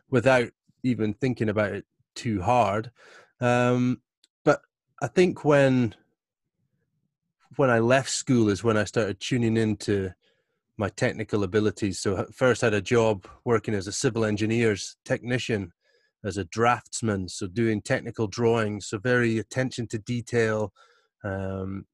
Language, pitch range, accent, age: English, 105-125 Hz, British, 30-49